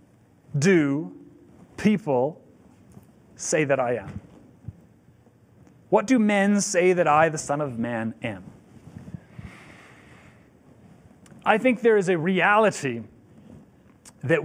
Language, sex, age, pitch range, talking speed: English, male, 30-49, 140-185 Hz, 100 wpm